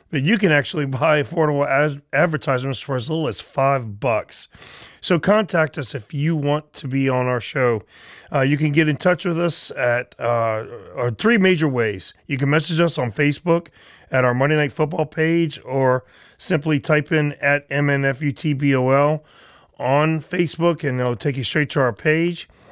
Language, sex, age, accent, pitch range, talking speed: English, male, 30-49, American, 135-165 Hz, 175 wpm